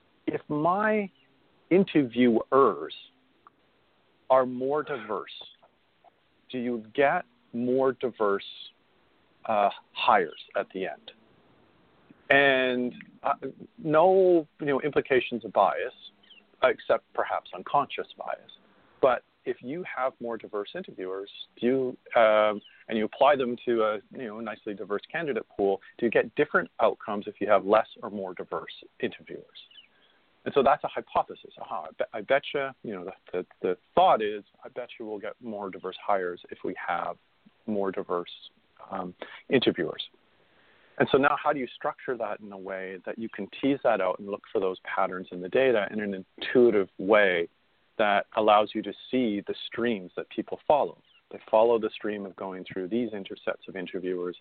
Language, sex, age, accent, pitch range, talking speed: English, male, 50-69, American, 100-145 Hz, 160 wpm